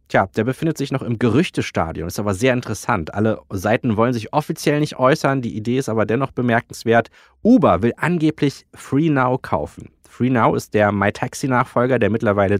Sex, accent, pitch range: male, German, 100-135 Hz